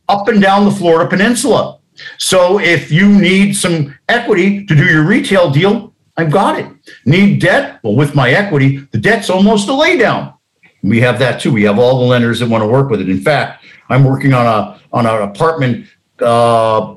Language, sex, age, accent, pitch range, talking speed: English, male, 50-69, American, 140-195 Hz, 190 wpm